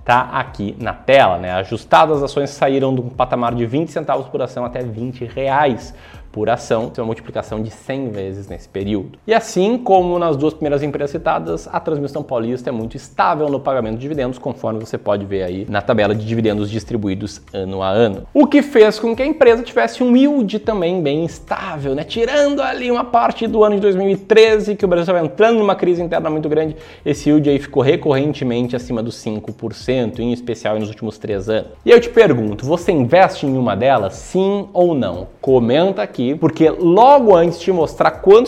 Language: Portuguese